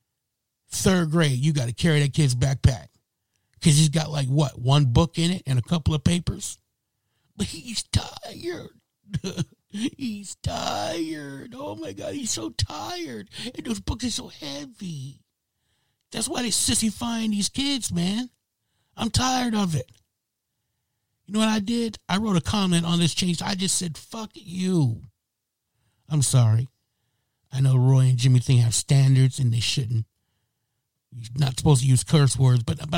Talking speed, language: 165 wpm, English